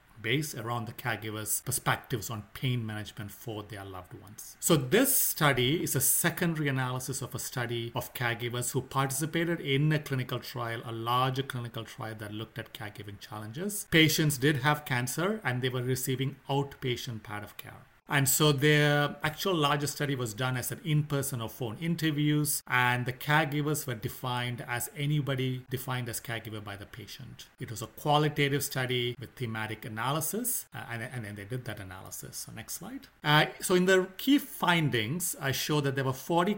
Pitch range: 120-150 Hz